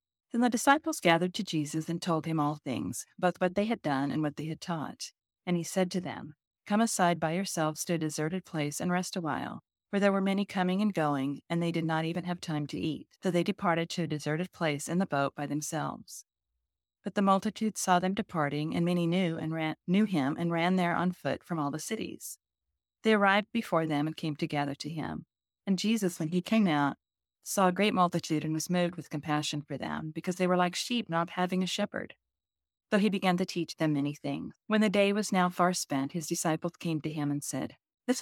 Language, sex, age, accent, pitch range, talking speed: English, female, 40-59, American, 150-190 Hz, 225 wpm